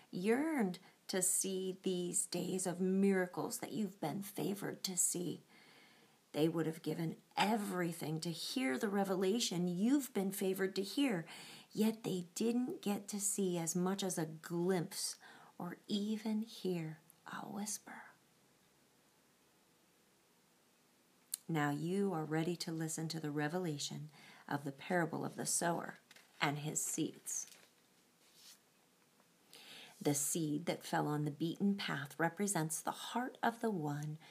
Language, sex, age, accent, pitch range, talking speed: English, female, 40-59, American, 155-205 Hz, 130 wpm